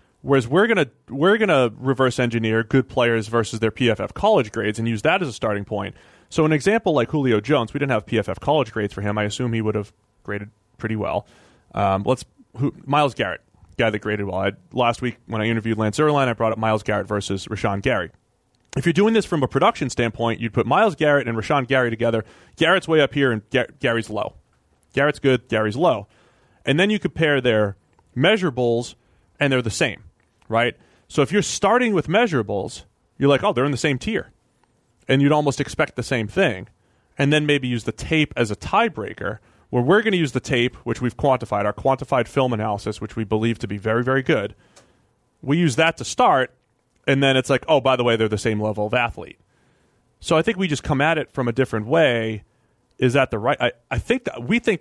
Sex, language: male, English